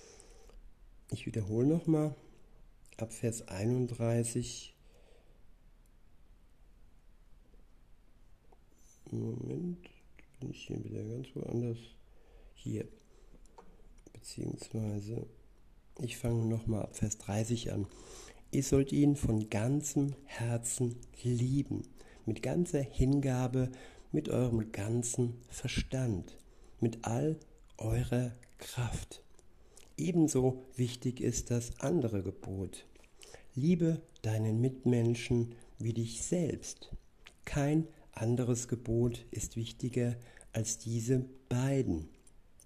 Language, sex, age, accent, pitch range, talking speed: German, male, 60-79, German, 115-135 Hz, 85 wpm